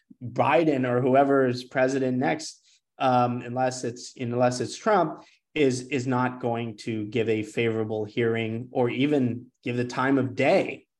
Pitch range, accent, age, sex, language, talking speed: 120-140 Hz, American, 30-49, male, English, 155 wpm